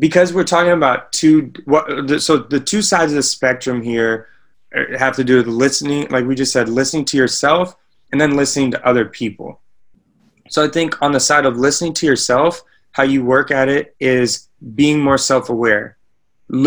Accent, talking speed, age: American, 180 wpm, 20-39